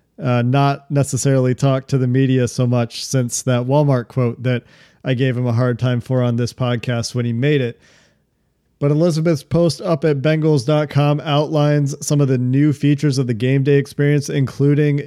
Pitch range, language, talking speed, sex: 130-150 Hz, English, 185 wpm, male